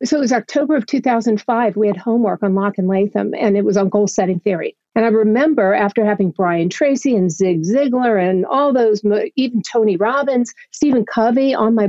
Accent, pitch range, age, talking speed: American, 200-235 Hz, 50-69, 200 wpm